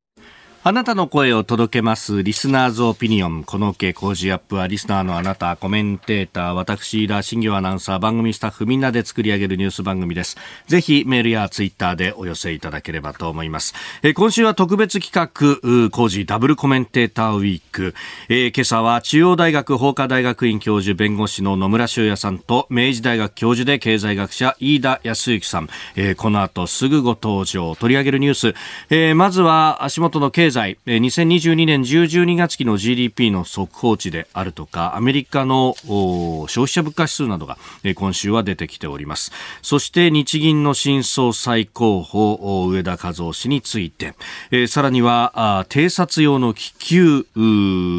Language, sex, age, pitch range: Japanese, male, 40-59, 95-135 Hz